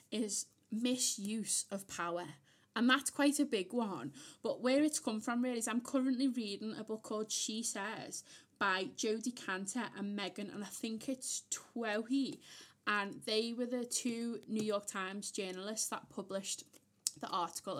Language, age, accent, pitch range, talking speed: English, 20-39, British, 195-240 Hz, 160 wpm